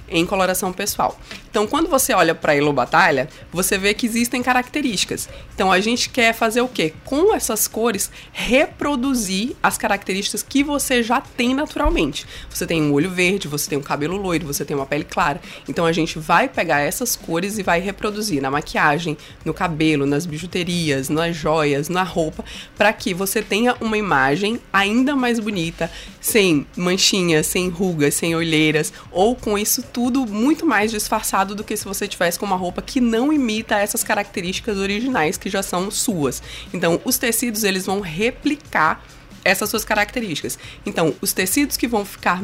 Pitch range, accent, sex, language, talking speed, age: 180-245 Hz, Brazilian, female, Portuguese, 175 wpm, 20-39